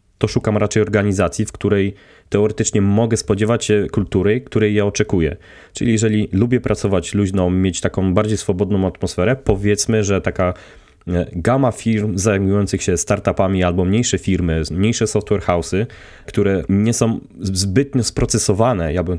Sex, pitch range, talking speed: male, 90-110 Hz, 140 wpm